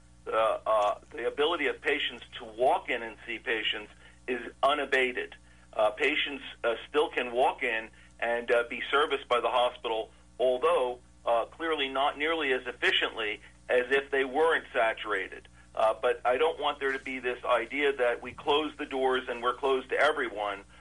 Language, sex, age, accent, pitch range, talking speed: English, male, 50-69, American, 105-135 Hz, 175 wpm